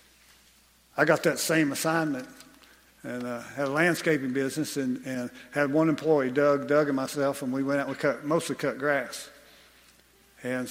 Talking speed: 175 wpm